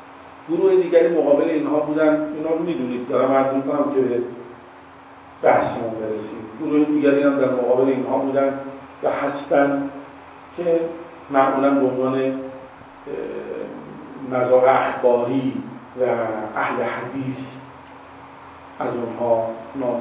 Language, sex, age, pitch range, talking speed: Persian, male, 50-69, 120-140 Hz, 105 wpm